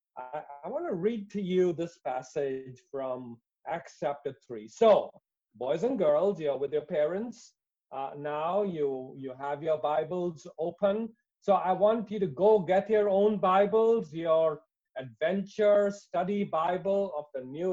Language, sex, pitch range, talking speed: English, male, 145-200 Hz, 150 wpm